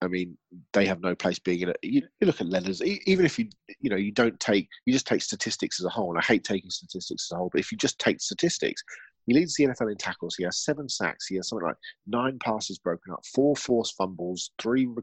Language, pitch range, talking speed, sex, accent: English, 95-125 Hz, 255 wpm, male, British